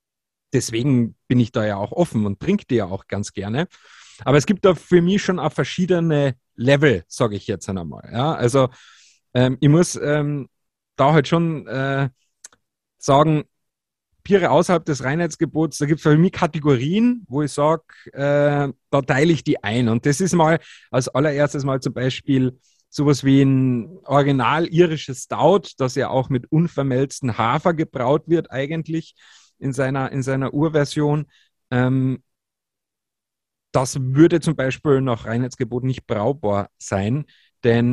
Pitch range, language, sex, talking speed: 120-150 Hz, German, male, 155 wpm